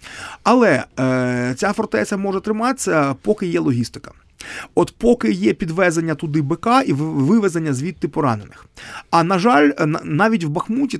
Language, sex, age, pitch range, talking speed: Ukrainian, male, 30-49, 145-195 Hz, 135 wpm